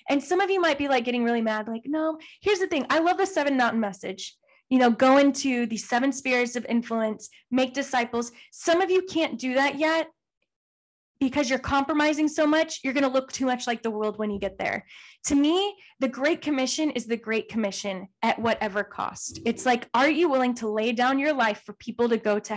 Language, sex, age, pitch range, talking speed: English, female, 10-29, 225-285 Hz, 225 wpm